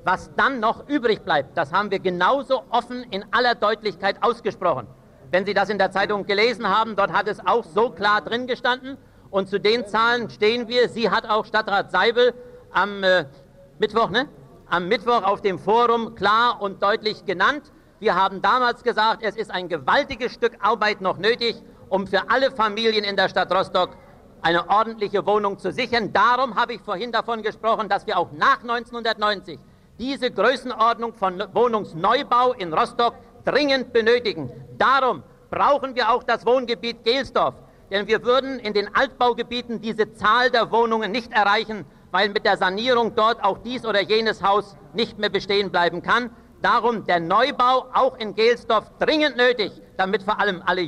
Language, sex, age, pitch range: German, male, 50-69, 200-240 Hz